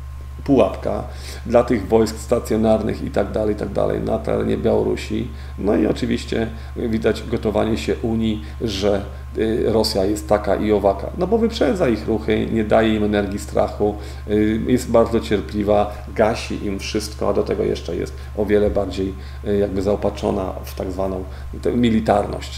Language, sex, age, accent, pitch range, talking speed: English, male, 40-59, Polish, 65-110 Hz, 150 wpm